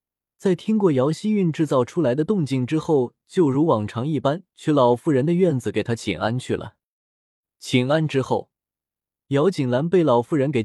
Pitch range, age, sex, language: 110-160 Hz, 20-39, male, Chinese